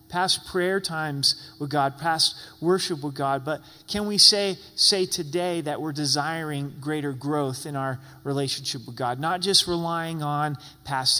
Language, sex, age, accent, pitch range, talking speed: English, male, 30-49, American, 140-175 Hz, 160 wpm